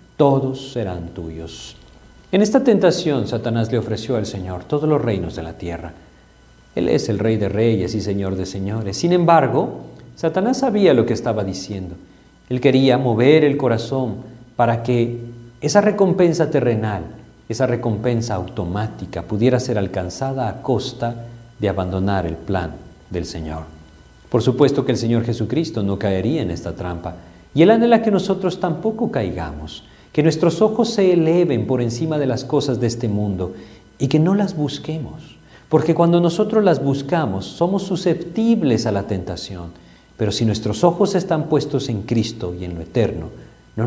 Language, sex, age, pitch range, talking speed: Spanish, male, 50-69, 95-155 Hz, 160 wpm